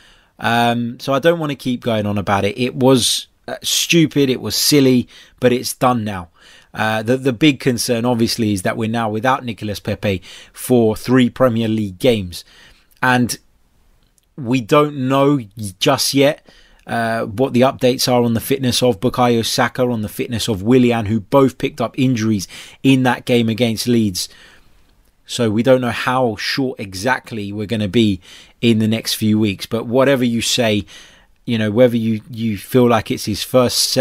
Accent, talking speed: British, 180 wpm